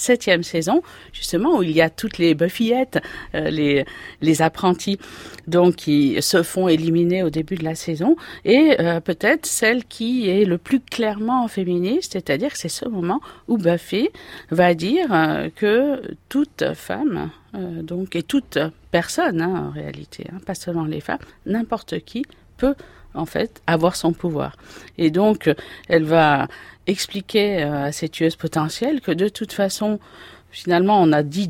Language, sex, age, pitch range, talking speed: French, female, 50-69, 165-235 Hz, 160 wpm